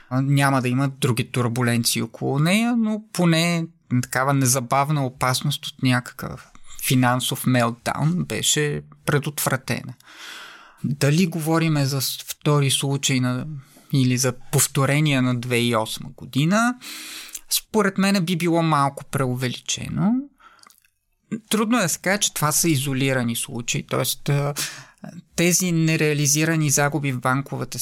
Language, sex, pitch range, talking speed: English, male, 125-165 Hz, 110 wpm